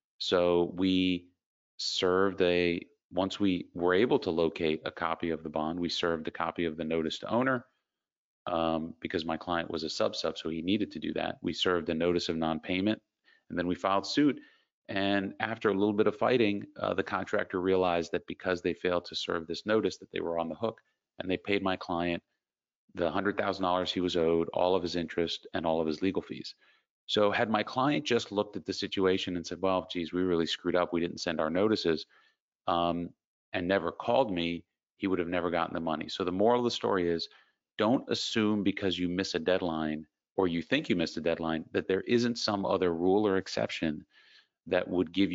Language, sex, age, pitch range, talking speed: English, male, 40-59, 85-100 Hz, 215 wpm